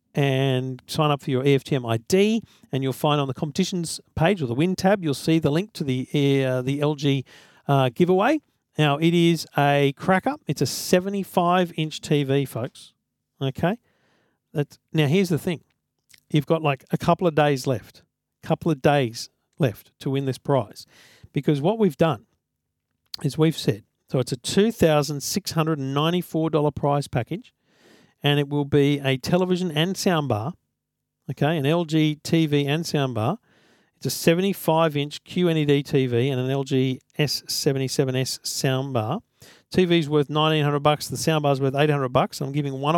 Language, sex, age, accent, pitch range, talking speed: English, male, 50-69, Australian, 135-170 Hz, 150 wpm